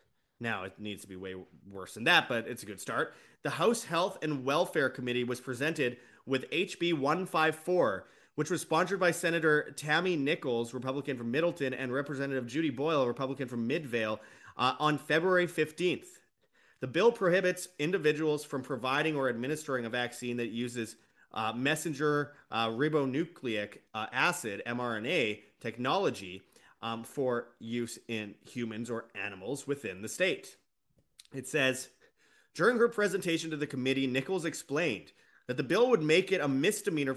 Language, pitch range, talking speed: English, 120-155 Hz, 150 wpm